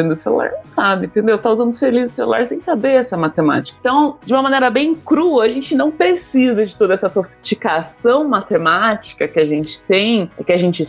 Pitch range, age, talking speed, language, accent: 195-270 Hz, 20-39, 205 wpm, Portuguese, Brazilian